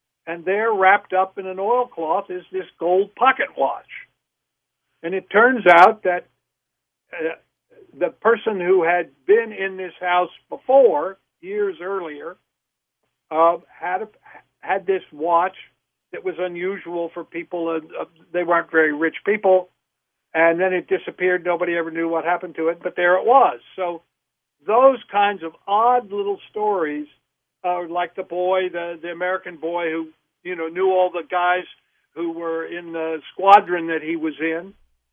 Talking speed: 160 wpm